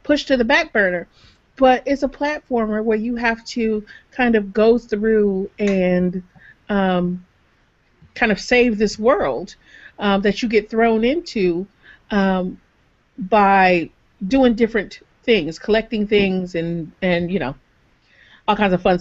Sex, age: female, 40-59